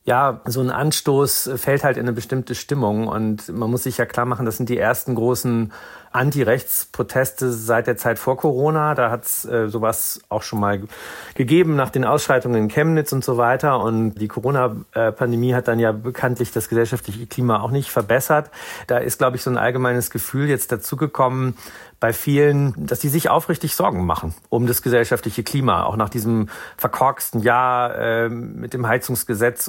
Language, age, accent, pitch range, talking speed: German, 40-59, German, 110-130 Hz, 175 wpm